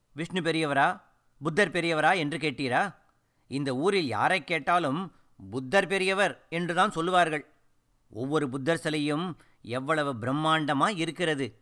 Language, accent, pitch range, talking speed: Tamil, native, 150-200 Hz, 105 wpm